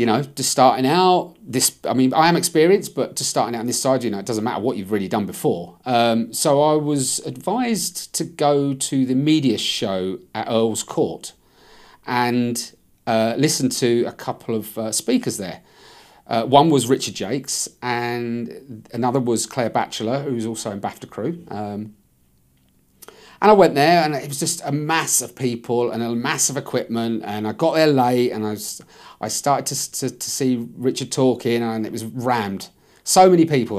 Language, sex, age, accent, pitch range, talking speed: English, male, 40-59, British, 115-145 Hz, 195 wpm